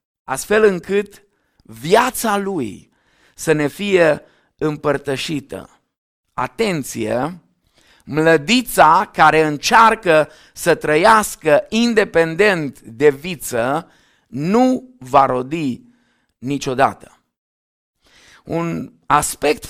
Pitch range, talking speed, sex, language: 150-220 Hz, 70 wpm, male, Romanian